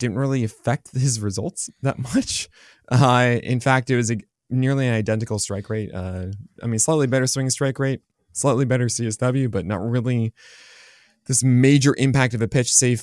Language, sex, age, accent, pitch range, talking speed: English, male, 20-39, American, 115-150 Hz, 180 wpm